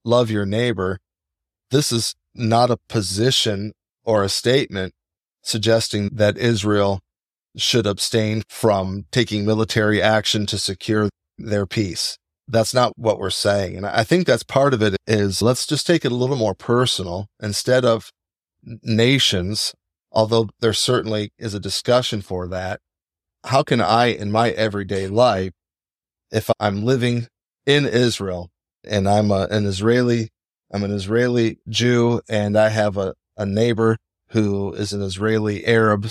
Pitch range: 100-120 Hz